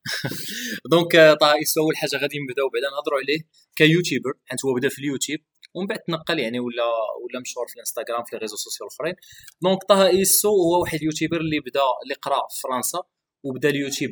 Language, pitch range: Arabic, 130-165 Hz